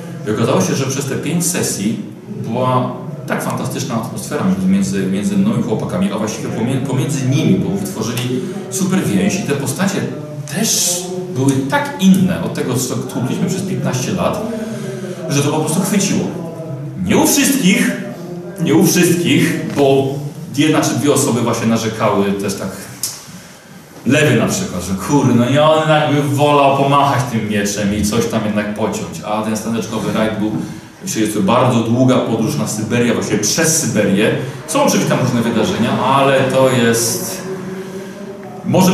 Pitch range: 125-180 Hz